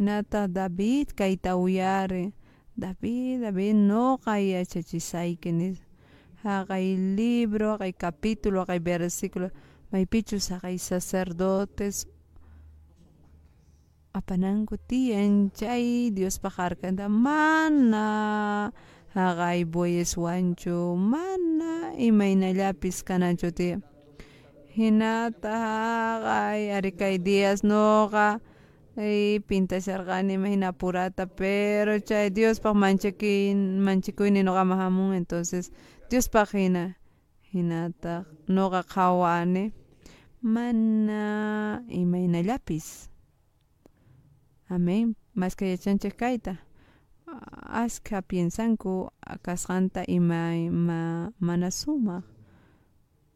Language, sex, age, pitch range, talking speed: Spanish, female, 30-49, 175-210 Hz, 85 wpm